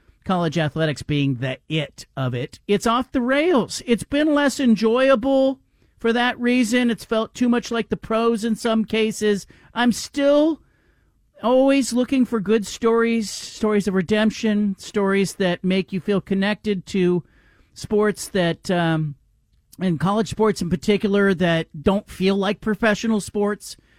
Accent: American